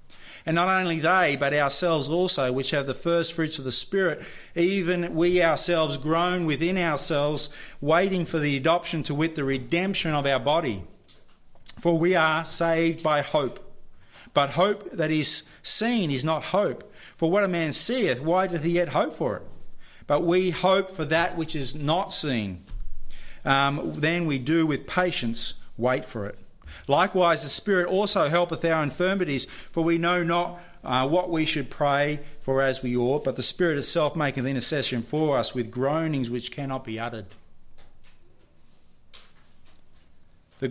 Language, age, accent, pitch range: English, 40-59, Australian, 130-170 Hz